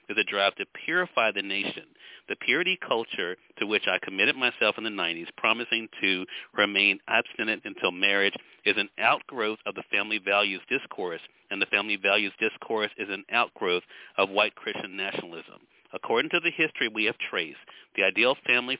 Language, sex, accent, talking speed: English, male, American, 170 wpm